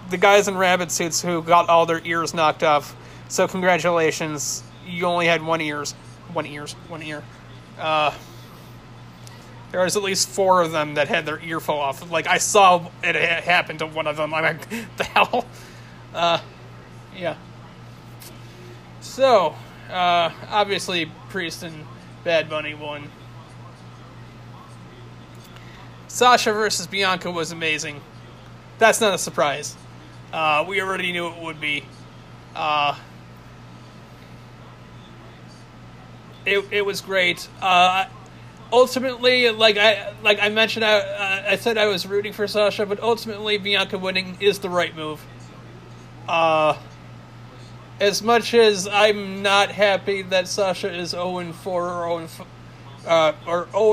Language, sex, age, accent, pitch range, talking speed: English, male, 30-49, American, 150-195 Hz, 130 wpm